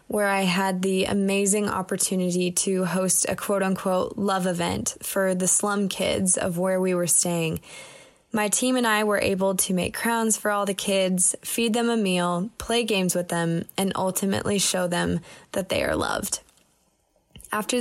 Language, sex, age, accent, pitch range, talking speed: English, female, 10-29, American, 180-210 Hz, 175 wpm